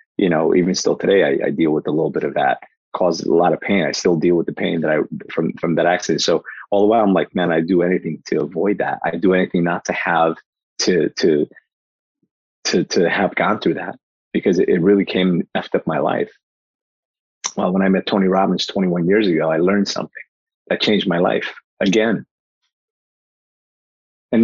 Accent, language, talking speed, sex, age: American, English, 210 wpm, male, 30-49